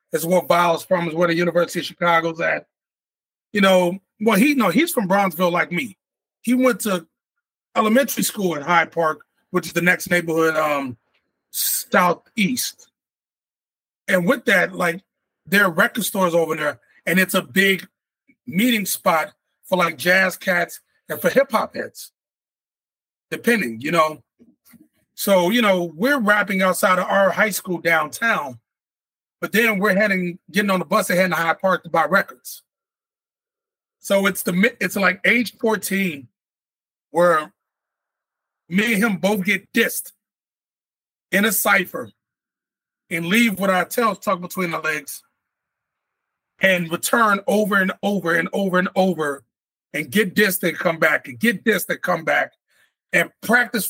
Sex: male